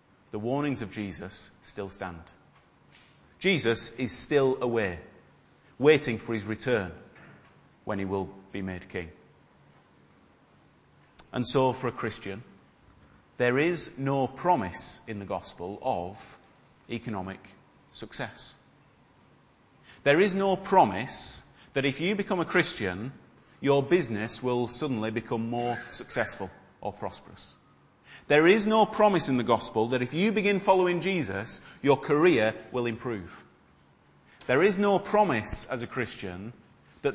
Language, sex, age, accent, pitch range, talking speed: English, male, 30-49, British, 105-160 Hz, 130 wpm